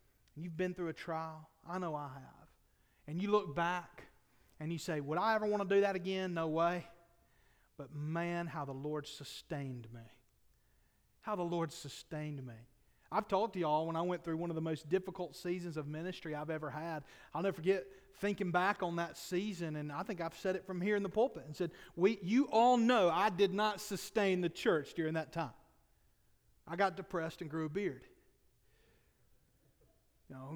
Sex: male